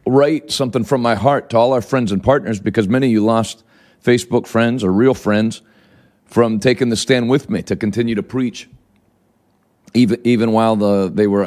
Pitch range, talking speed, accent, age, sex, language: 105-125 Hz, 195 wpm, American, 40-59, male, English